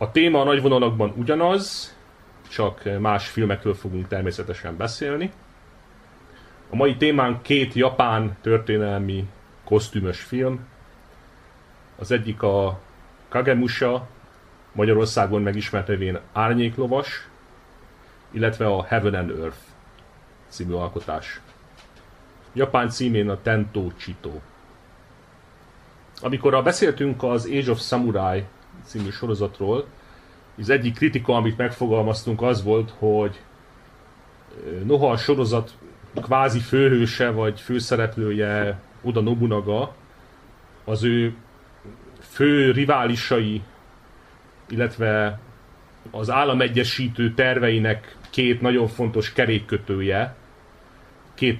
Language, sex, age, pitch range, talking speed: Hungarian, male, 30-49, 105-125 Hz, 90 wpm